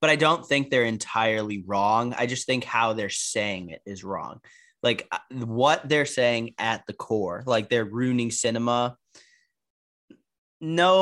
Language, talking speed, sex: English, 150 wpm, male